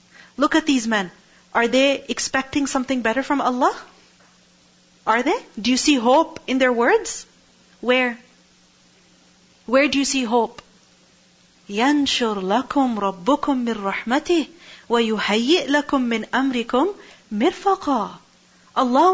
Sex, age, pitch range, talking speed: female, 40-59, 195-275 Hz, 115 wpm